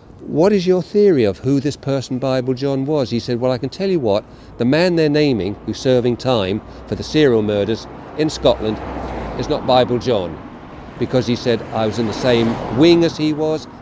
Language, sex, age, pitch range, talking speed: English, male, 50-69, 105-135 Hz, 210 wpm